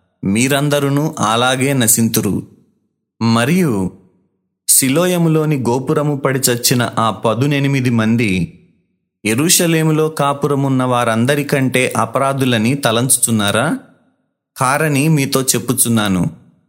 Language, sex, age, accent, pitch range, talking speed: Telugu, male, 30-49, native, 115-145 Hz, 70 wpm